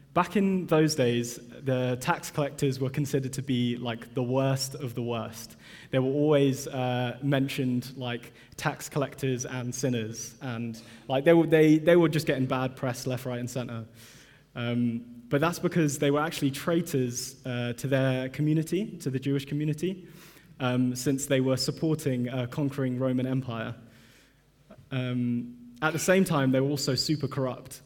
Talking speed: 165 wpm